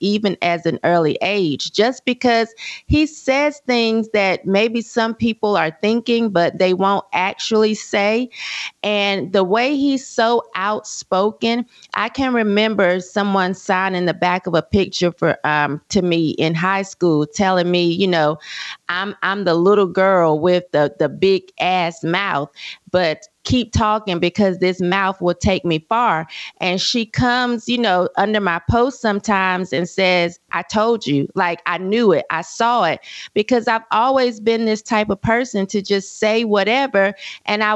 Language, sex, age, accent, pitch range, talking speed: English, female, 30-49, American, 180-225 Hz, 165 wpm